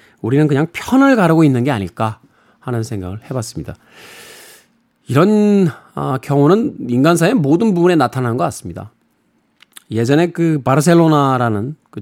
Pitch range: 120-175 Hz